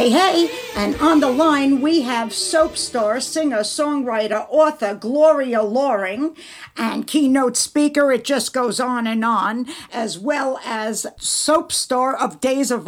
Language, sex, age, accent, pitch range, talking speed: English, female, 50-69, American, 235-300 Hz, 150 wpm